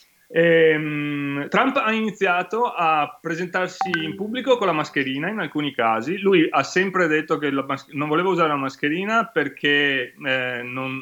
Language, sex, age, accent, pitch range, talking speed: Italian, male, 30-49, native, 130-180 Hz, 150 wpm